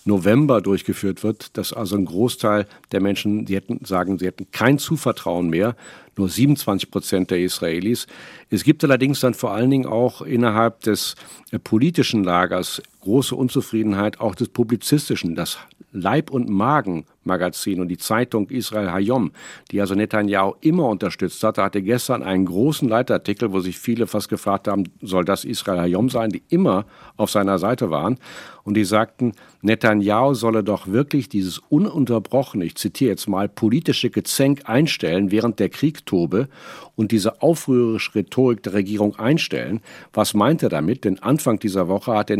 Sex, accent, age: male, German, 50-69